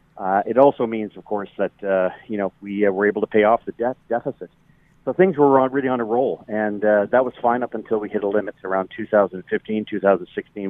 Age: 40-59